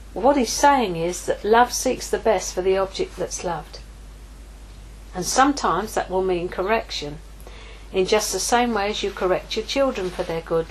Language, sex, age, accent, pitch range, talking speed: English, female, 50-69, British, 195-255 Hz, 185 wpm